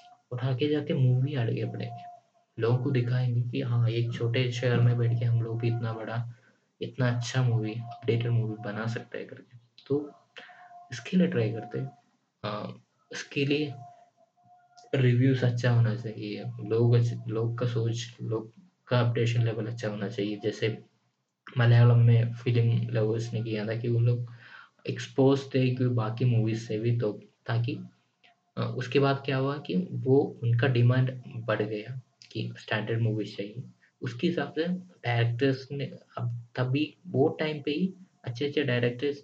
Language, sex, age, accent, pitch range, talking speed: Hindi, male, 20-39, native, 115-135 Hz, 120 wpm